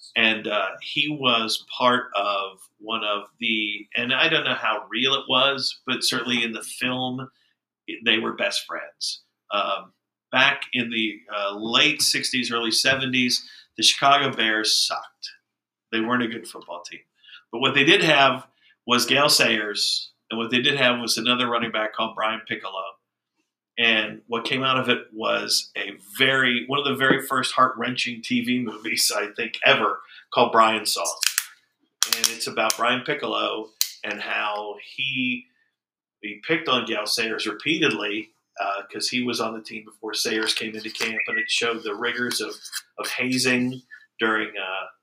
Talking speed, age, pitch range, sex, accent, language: 165 wpm, 50-69, 110-130 Hz, male, American, English